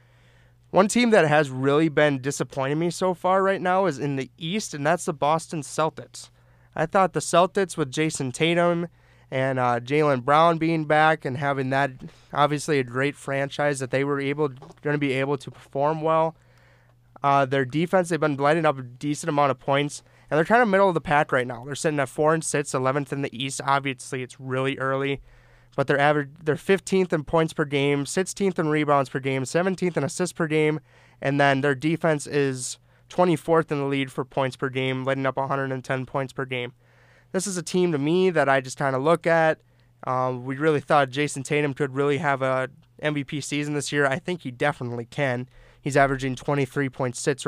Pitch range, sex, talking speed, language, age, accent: 130-155 Hz, male, 205 wpm, English, 20-39, American